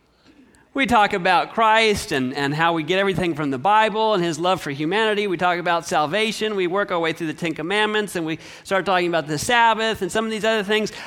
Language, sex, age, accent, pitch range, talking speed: English, male, 40-59, American, 195-260 Hz, 235 wpm